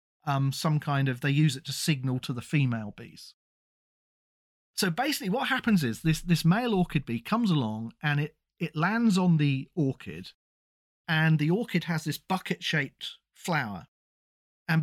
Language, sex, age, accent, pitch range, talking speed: English, male, 40-59, British, 150-190 Hz, 160 wpm